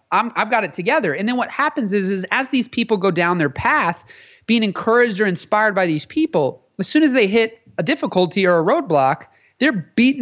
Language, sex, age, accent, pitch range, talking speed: English, male, 30-49, American, 160-210 Hz, 215 wpm